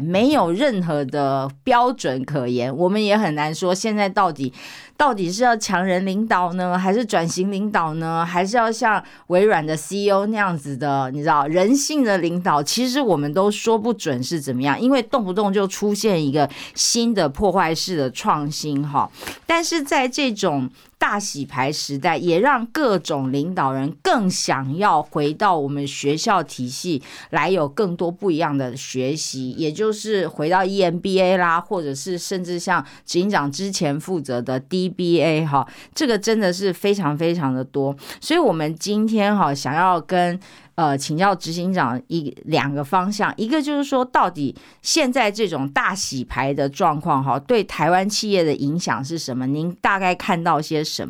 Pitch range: 145-205 Hz